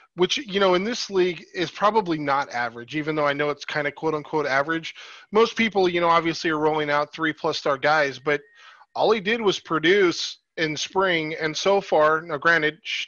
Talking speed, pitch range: 195 wpm, 150-190 Hz